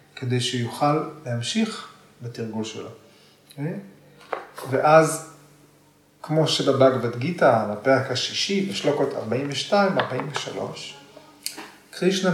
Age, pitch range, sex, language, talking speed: 30-49, 125-165 Hz, male, Hebrew, 80 wpm